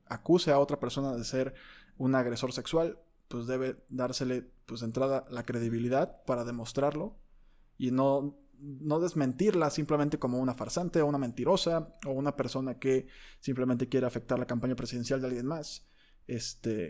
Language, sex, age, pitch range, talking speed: Spanish, male, 20-39, 125-145 Hz, 155 wpm